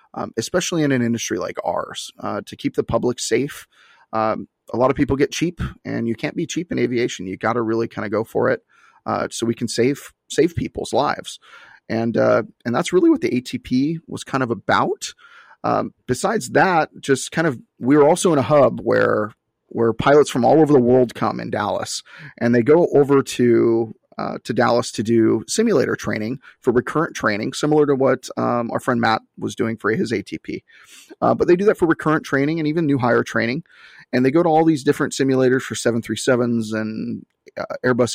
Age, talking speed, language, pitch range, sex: 30-49, 210 wpm, English, 120-150 Hz, male